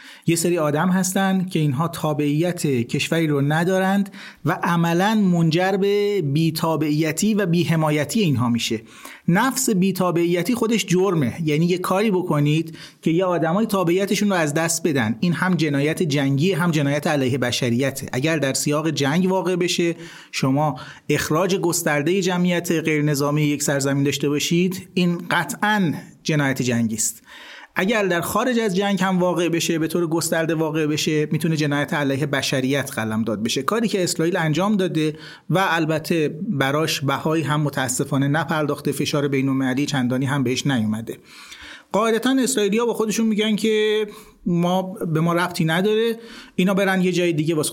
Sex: male